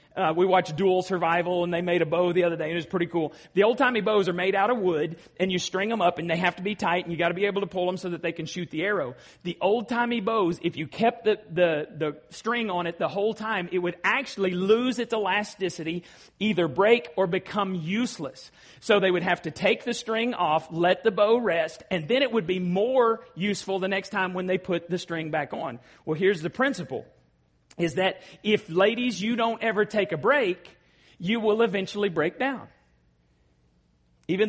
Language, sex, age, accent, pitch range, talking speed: English, male, 40-59, American, 160-210 Hz, 225 wpm